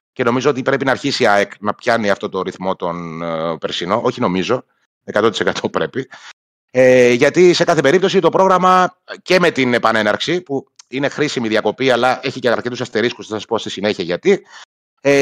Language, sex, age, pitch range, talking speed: Greek, male, 30-49, 110-160 Hz, 180 wpm